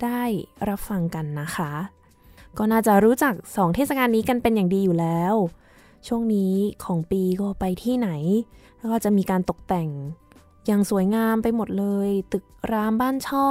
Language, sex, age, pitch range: Thai, female, 20-39, 185-245 Hz